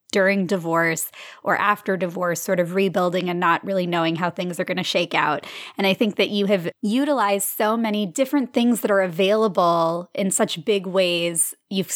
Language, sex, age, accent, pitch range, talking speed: English, female, 20-39, American, 180-215 Hz, 190 wpm